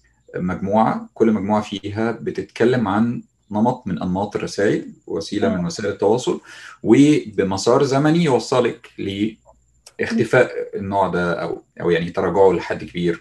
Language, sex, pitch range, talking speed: Arabic, male, 100-145 Hz, 120 wpm